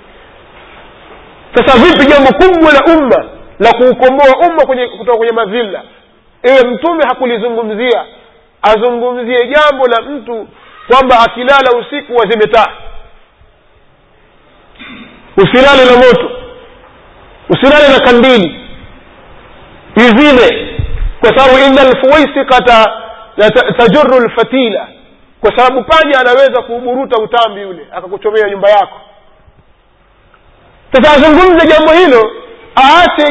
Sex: male